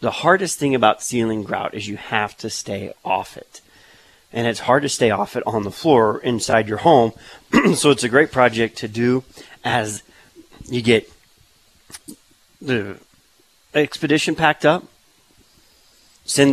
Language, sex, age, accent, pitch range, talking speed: English, male, 40-59, American, 105-140 Hz, 150 wpm